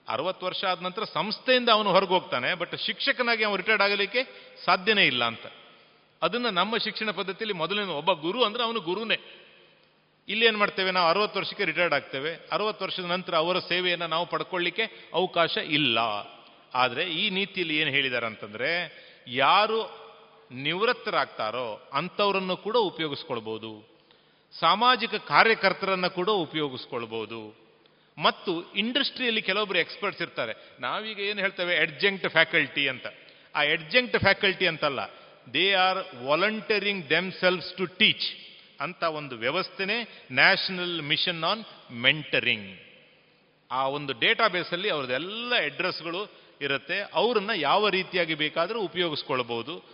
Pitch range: 160-205 Hz